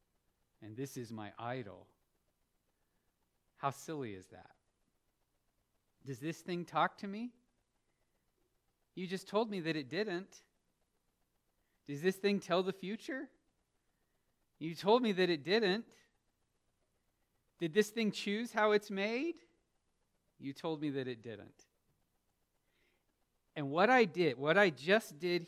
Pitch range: 115-180 Hz